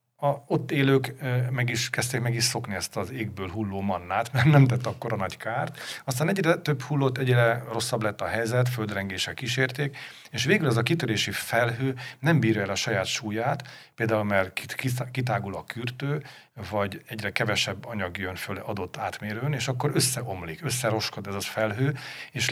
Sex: male